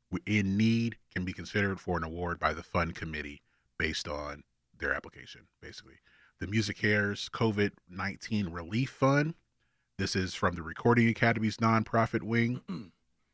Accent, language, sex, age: American, English, male, 30-49